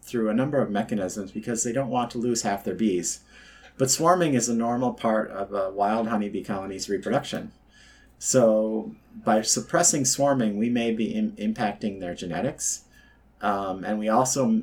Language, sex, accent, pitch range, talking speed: English, male, American, 105-125 Hz, 170 wpm